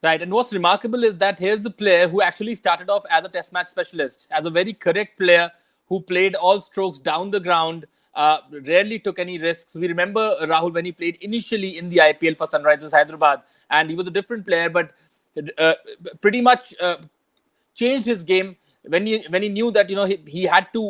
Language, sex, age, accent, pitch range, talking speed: English, male, 30-49, Indian, 170-205 Hz, 215 wpm